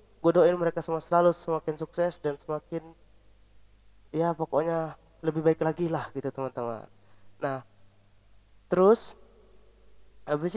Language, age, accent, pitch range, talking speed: Indonesian, 20-39, native, 145-185 Hz, 110 wpm